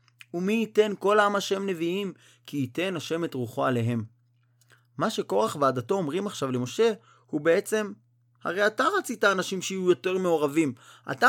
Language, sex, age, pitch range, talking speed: Hebrew, male, 30-49, 125-205 Hz, 150 wpm